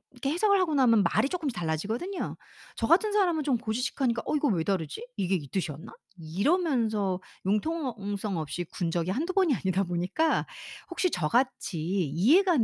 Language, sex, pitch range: Korean, female, 185-290 Hz